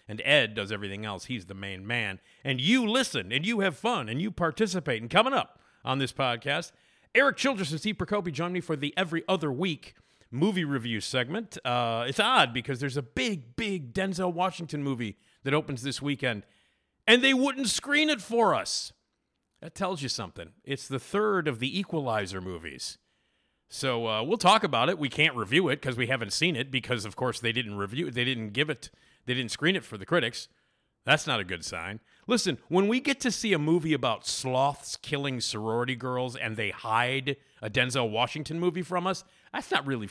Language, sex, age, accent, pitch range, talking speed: English, male, 50-69, American, 115-175 Hz, 205 wpm